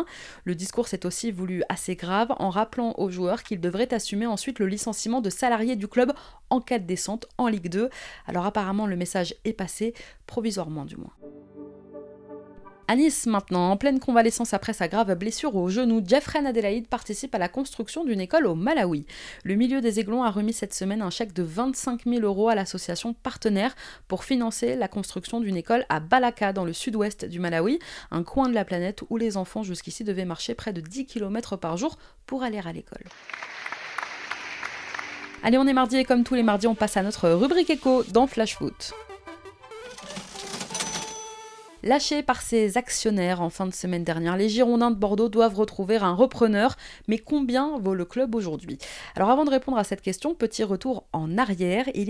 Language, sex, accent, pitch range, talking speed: French, female, French, 190-250 Hz, 190 wpm